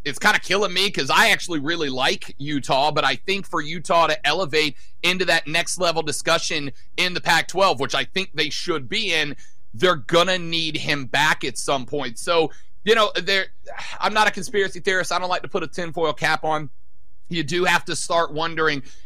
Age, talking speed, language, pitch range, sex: 30-49, 200 wpm, English, 155-205 Hz, male